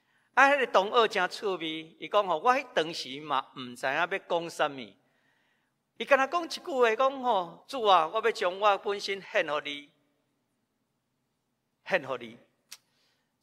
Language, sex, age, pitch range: Chinese, male, 50-69, 180-270 Hz